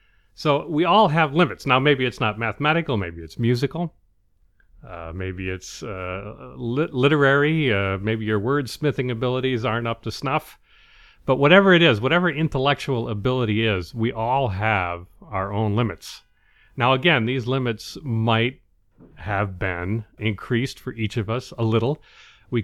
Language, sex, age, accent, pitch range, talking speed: English, male, 40-59, American, 95-125 Hz, 150 wpm